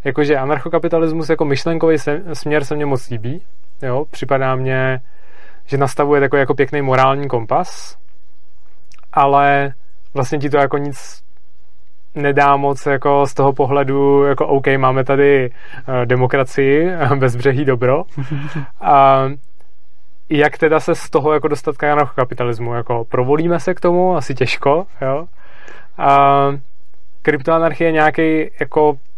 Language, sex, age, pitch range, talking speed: Czech, male, 20-39, 125-145 Hz, 130 wpm